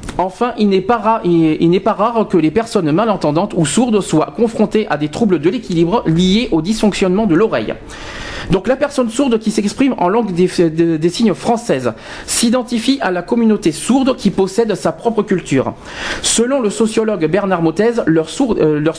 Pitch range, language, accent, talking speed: 160-230 Hz, French, French, 185 wpm